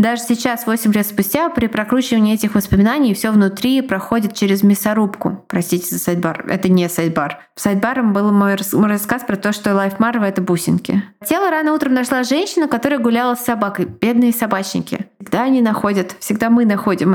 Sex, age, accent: female, 20-39, native